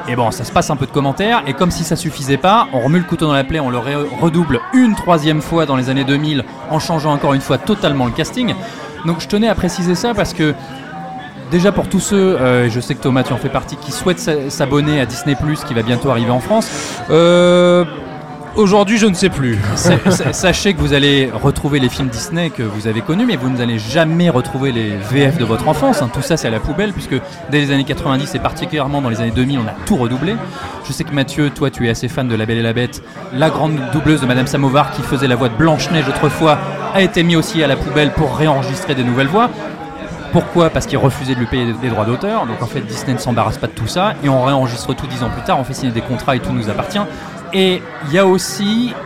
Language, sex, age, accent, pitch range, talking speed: French, male, 30-49, French, 130-170 Hz, 250 wpm